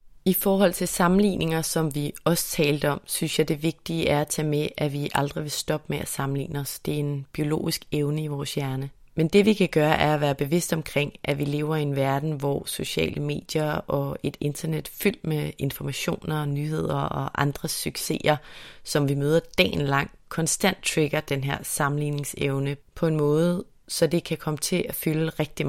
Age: 30-49